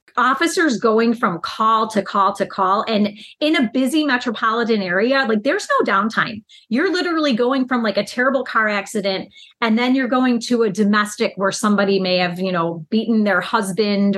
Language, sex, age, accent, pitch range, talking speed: English, female, 30-49, American, 200-270 Hz, 180 wpm